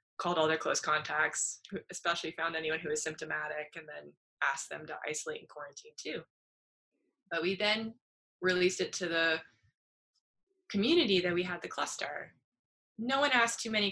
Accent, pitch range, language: American, 165-210 Hz, English